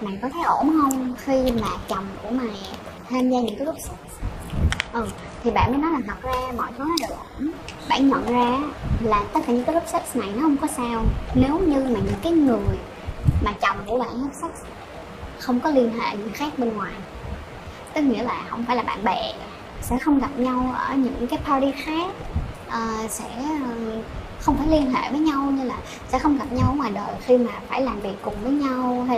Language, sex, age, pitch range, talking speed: Vietnamese, male, 10-29, 230-280 Hz, 220 wpm